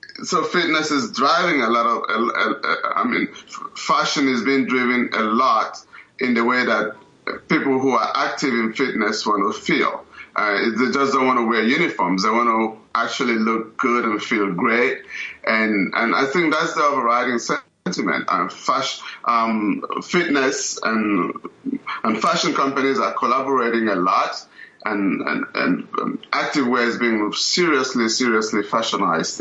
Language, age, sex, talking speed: English, 30-49, male, 155 wpm